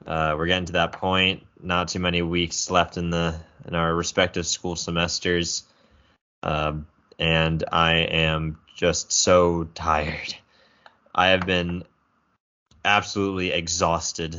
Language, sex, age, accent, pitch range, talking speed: English, male, 20-39, American, 80-95 Hz, 125 wpm